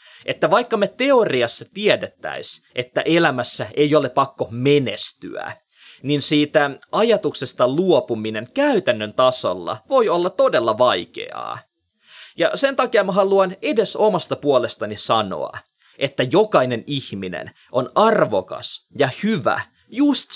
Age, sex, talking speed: 20-39, male, 110 wpm